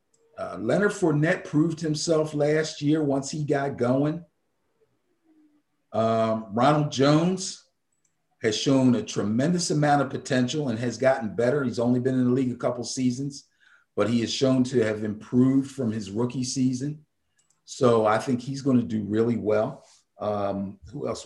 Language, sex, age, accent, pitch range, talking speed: English, male, 50-69, American, 115-165 Hz, 160 wpm